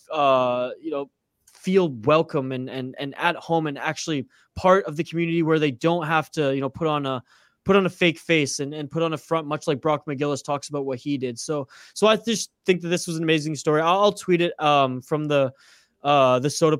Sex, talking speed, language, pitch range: male, 240 wpm, English, 135-170 Hz